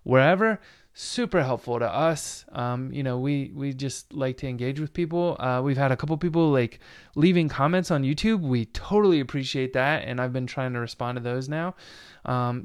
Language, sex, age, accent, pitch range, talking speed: English, male, 20-39, American, 130-170 Hz, 195 wpm